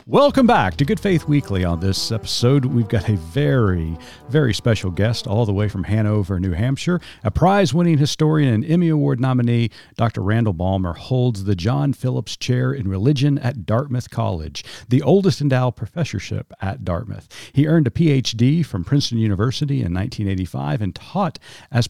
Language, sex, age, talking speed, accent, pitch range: English, male, 50-69, 165 wpm, American, 100-135 Hz